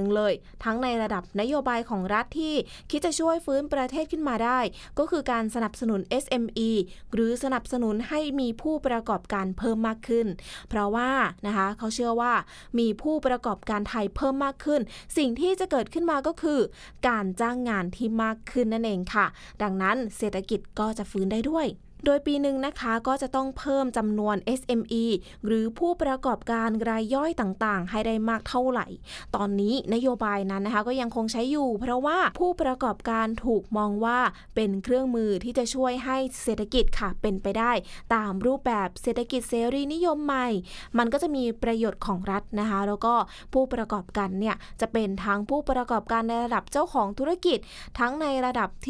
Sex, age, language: female, 20-39, English